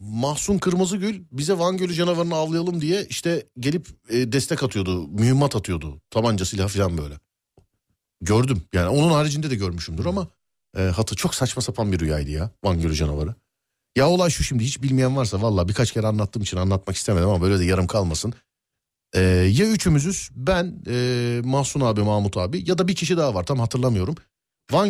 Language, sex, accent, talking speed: Turkish, male, native, 175 wpm